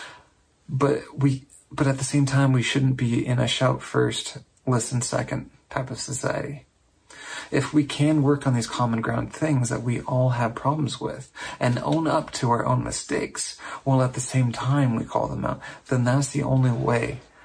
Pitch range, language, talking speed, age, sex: 125-140 Hz, English, 180 wpm, 40-59, male